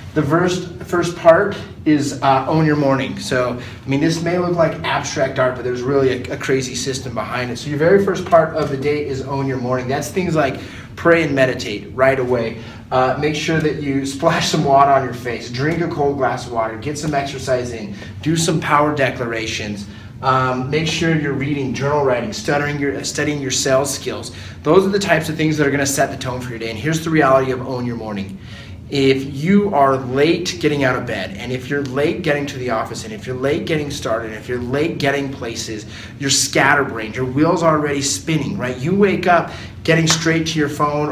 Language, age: English, 30-49